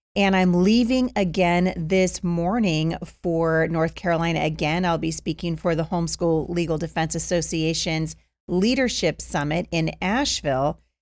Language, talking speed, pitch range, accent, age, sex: English, 125 wpm, 165-195 Hz, American, 30-49, female